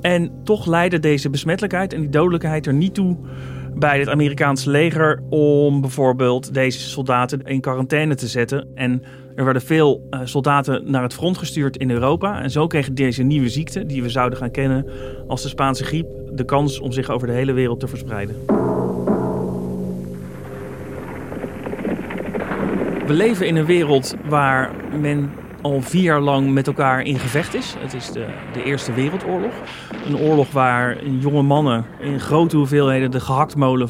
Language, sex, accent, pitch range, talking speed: Dutch, male, Dutch, 125-145 Hz, 160 wpm